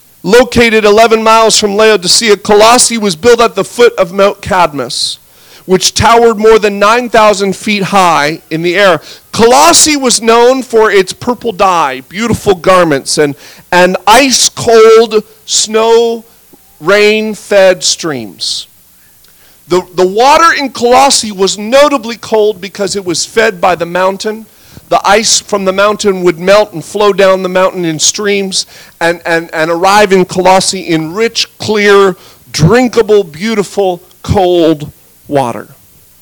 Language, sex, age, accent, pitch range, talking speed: English, male, 40-59, American, 185-230 Hz, 135 wpm